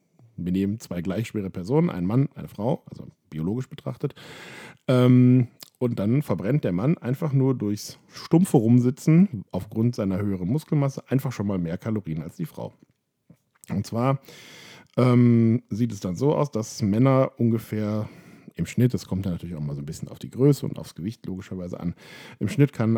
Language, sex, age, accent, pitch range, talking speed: German, male, 50-69, German, 95-135 Hz, 180 wpm